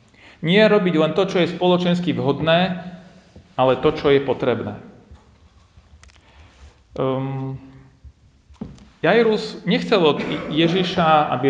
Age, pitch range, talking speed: 40-59, 115-170 Hz, 100 wpm